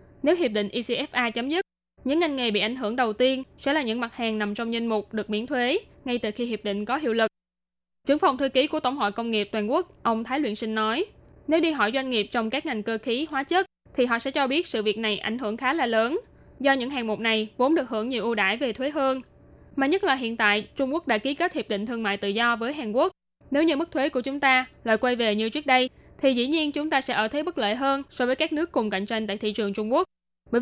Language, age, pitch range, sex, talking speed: Vietnamese, 10-29, 220-275 Hz, female, 285 wpm